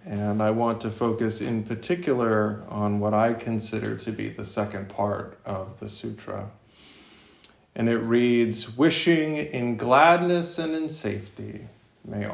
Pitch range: 110-135 Hz